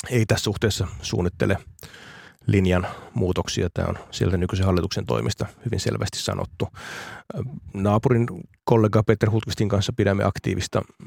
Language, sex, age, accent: Finnish, male, 30-49, native